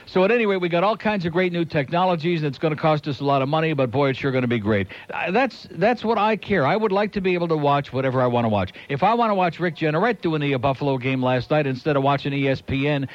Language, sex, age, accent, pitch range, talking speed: English, male, 60-79, American, 135-195 Hz, 300 wpm